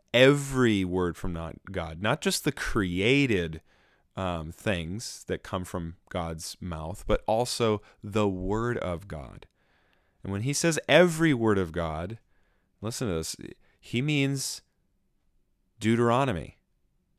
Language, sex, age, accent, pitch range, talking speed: English, male, 30-49, American, 90-120 Hz, 125 wpm